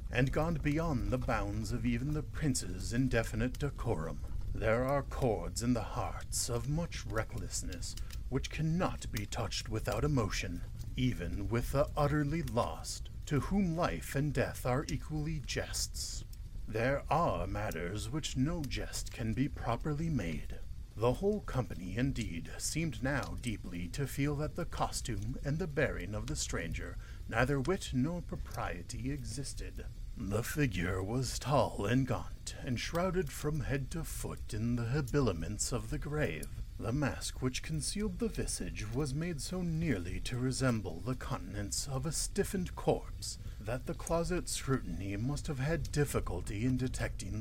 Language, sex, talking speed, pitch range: English, male, 150 wpm, 105-145 Hz